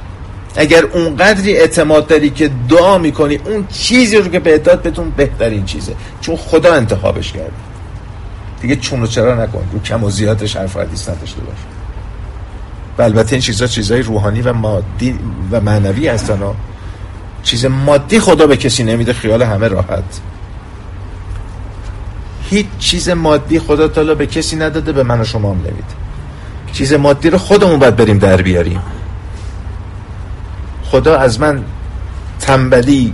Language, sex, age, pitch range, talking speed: Persian, male, 50-69, 95-150 Hz, 140 wpm